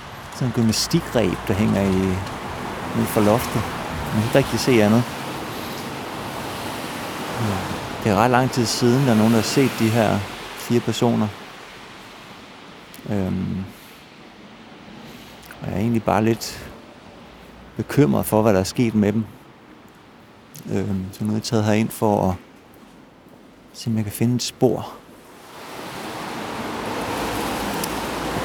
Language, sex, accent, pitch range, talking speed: Danish, male, native, 105-125 Hz, 130 wpm